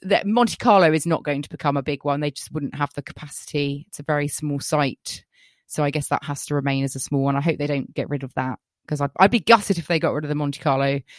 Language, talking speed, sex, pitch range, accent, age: English, 290 wpm, female, 145-185 Hz, British, 20-39